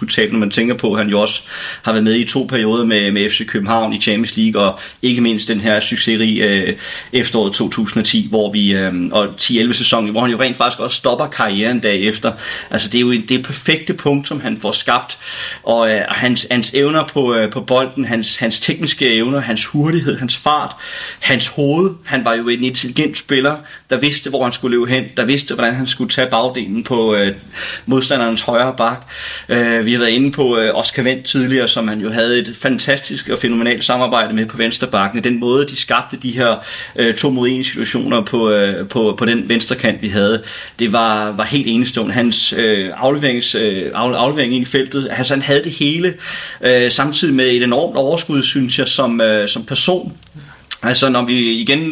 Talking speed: 200 wpm